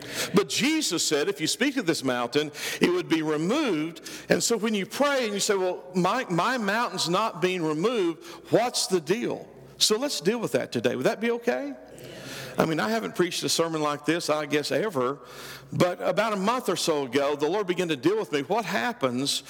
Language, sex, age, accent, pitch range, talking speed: English, male, 50-69, American, 150-195 Hz, 210 wpm